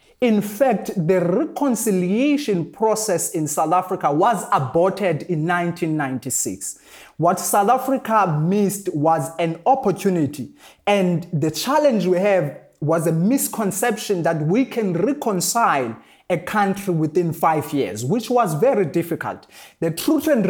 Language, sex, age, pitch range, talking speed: English, male, 30-49, 165-210 Hz, 125 wpm